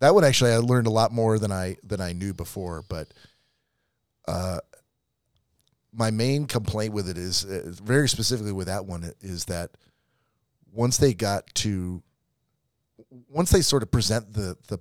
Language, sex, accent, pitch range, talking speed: English, male, American, 90-115 Hz, 165 wpm